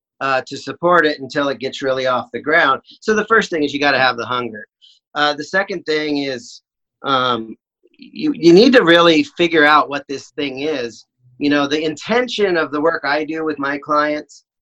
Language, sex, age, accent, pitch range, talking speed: English, male, 40-59, American, 135-170 Hz, 210 wpm